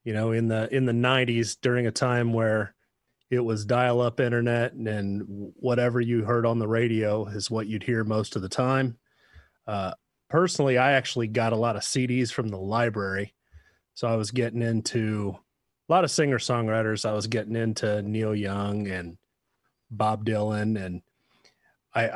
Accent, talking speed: American, 170 wpm